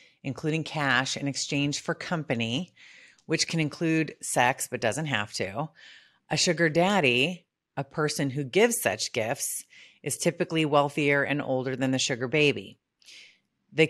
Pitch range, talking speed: 135-170 Hz, 145 wpm